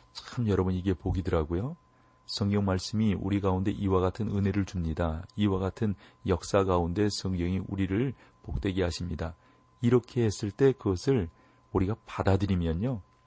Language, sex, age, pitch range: Korean, male, 40-59, 85-110 Hz